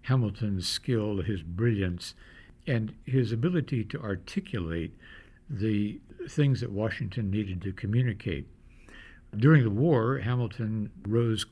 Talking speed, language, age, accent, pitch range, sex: 110 wpm, English, 60-79, American, 95-125 Hz, male